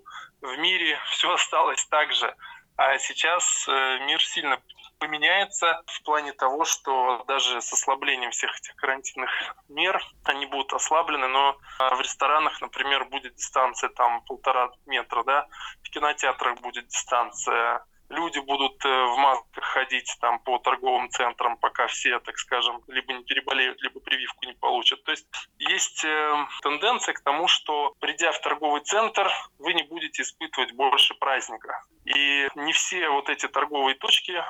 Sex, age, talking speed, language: male, 20-39, 145 wpm, Russian